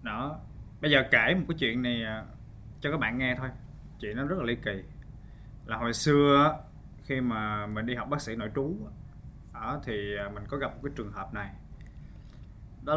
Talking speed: 190 wpm